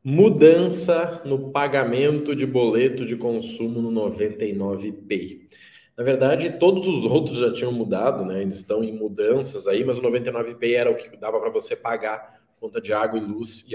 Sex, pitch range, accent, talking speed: male, 115-150 Hz, Brazilian, 170 wpm